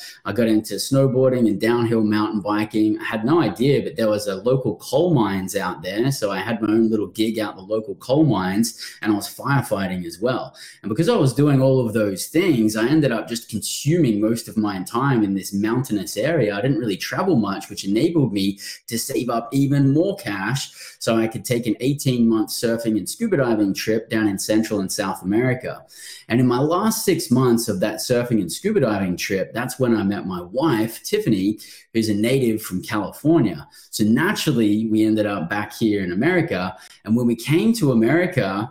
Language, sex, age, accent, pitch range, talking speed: English, male, 20-39, Australian, 105-125 Hz, 205 wpm